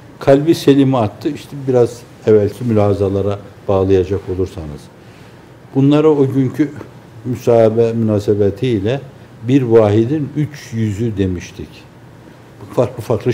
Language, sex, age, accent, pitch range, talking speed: Turkish, male, 60-79, native, 105-130 Hz, 100 wpm